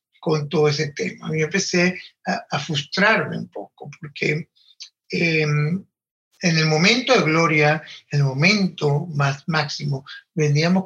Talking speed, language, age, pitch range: 135 wpm, English, 60-79, 145-180 Hz